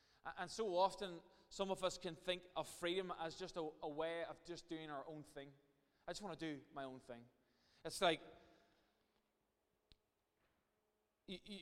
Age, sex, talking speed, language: 20-39, male, 165 wpm, English